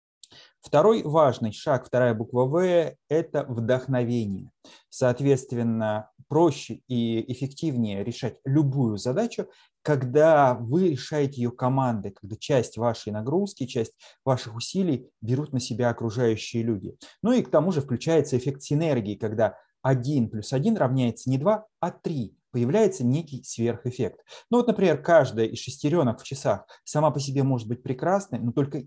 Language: Russian